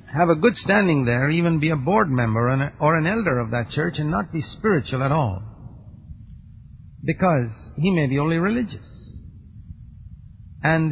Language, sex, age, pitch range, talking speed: English, male, 50-69, 120-160 Hz, 160 wpm